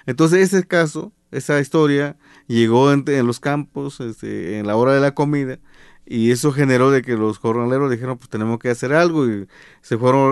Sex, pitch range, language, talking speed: male, 120-150 Hz, Spanish, 180 wpm